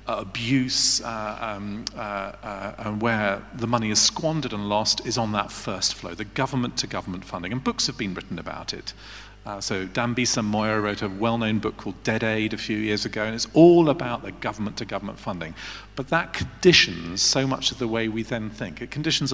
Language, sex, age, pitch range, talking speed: English, male, 40-59, 100-120 Hz, 200 wpm